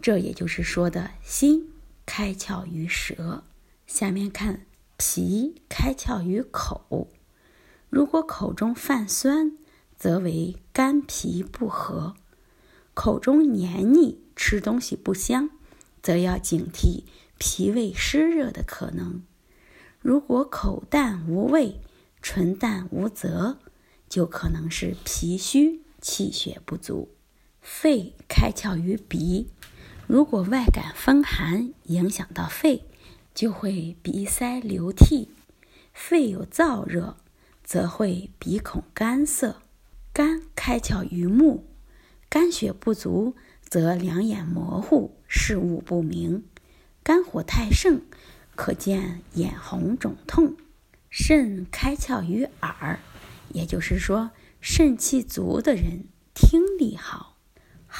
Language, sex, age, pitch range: Chinese, female, 20-39, 180-285 Hz